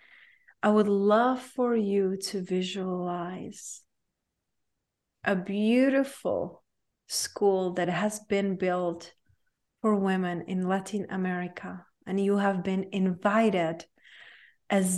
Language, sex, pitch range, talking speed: English, female, 190-215 Hz, 100 wpm